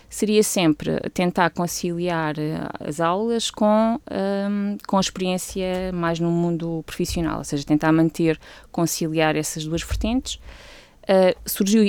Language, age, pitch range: Portuguese, 20-39, 155-190 Hz